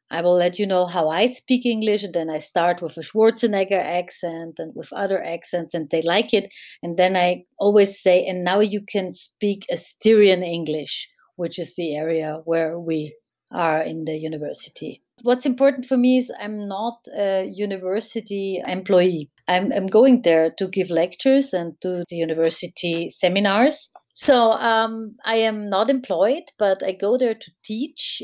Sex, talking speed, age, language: female, 170 wpm, 30-49, English